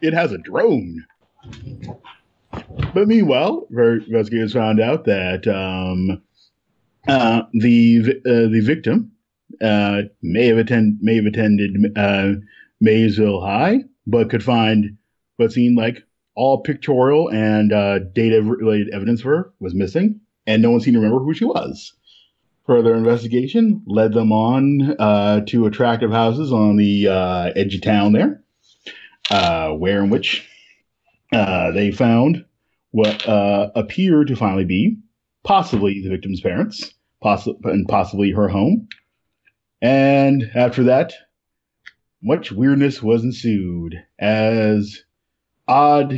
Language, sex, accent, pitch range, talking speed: English, male, American, 100-125 Hz, 130 wpm